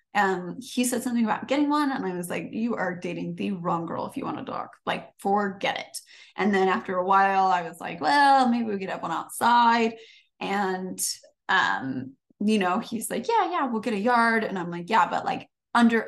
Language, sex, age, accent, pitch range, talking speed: English, female, 20-39, American, 200-265 Hz, 225 wpm